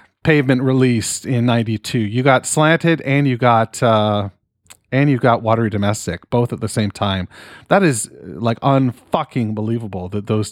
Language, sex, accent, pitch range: English, male, American, 110-140 Hz